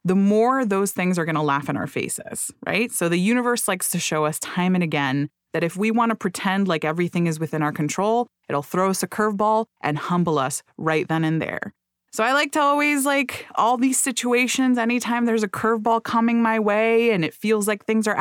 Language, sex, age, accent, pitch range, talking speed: English, female, 20-39, American, 175-235 Hz, 220 wpm